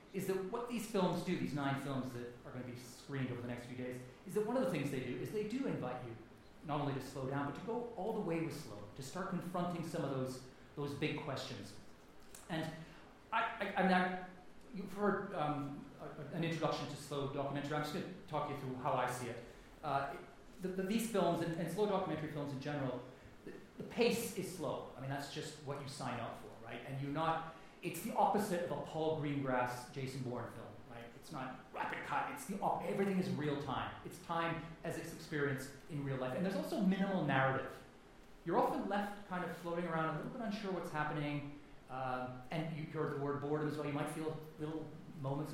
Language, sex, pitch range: English, male, 135-180 Hz